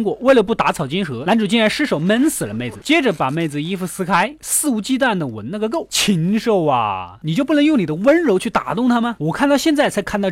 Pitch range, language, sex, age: 165-245 Hz, Chinese, male, 20-39